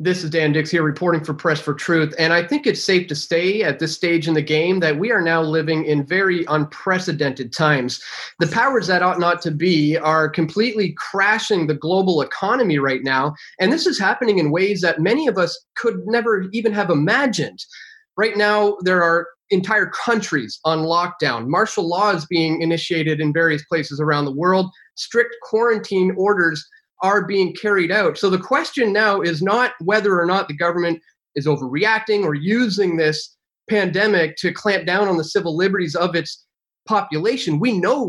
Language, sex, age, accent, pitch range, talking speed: English, male, 30-49, American, 160-205 Hz, 185 wpm